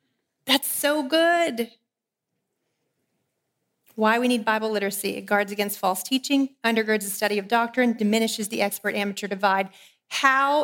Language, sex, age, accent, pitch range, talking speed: English, female, 40-59, American, 215-260 Hz, 130 wpm